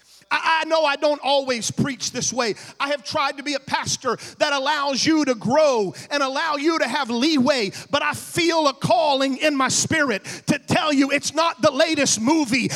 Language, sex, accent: English, male, American